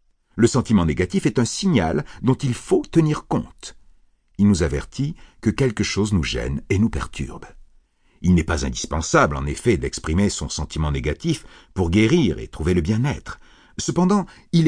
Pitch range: 85-130 Hz